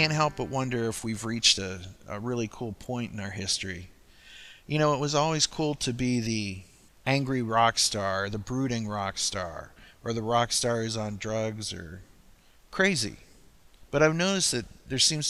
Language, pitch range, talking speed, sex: English, 100-130 Hz, 185 wpm, male